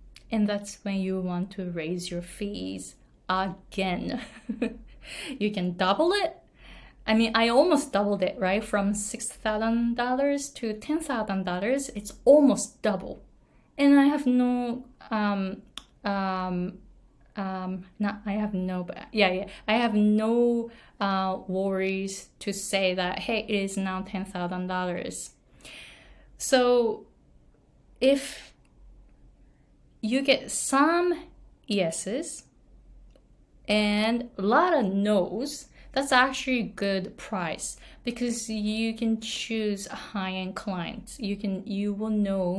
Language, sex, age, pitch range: Japanese, female, 20-39, 190-250 Hz